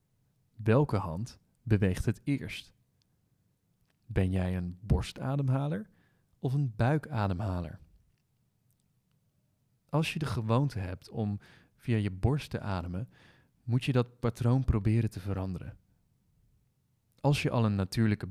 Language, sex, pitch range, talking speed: Dutch, male, 100-130 Hz, 115 wpm